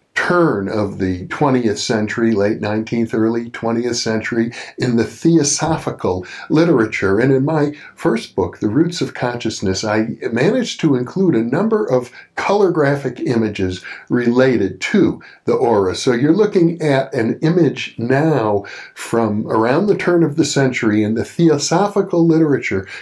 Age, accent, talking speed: 50-69, American, 145 wpm